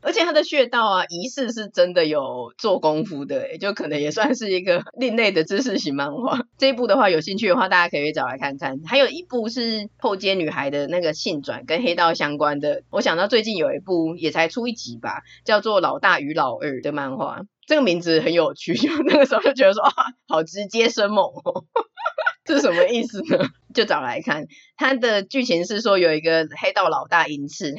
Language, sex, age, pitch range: Chinese, female, 30-49, 155-230 Hz